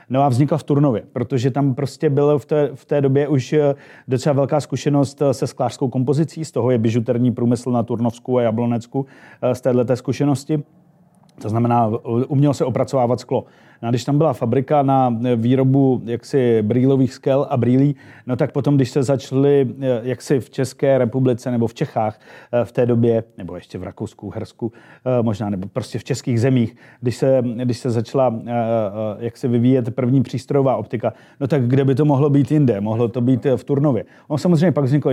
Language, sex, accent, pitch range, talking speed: Czech, male, native, 120-140 Hz, 175 wpm